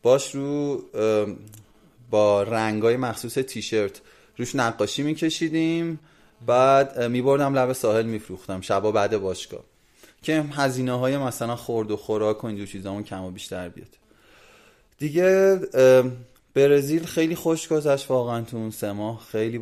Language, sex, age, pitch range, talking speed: Persian, male, 30-49, 105-130 Hz, 135 wpm